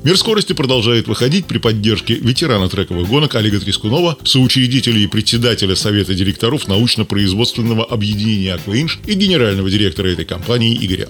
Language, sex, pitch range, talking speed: Russian, male, 100-130 Hz, 135 wpm